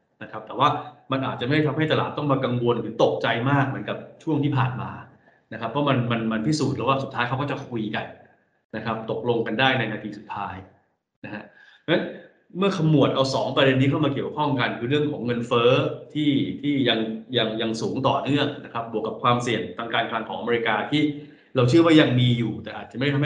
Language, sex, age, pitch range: Thai, male, 20-39, 115-140 Hz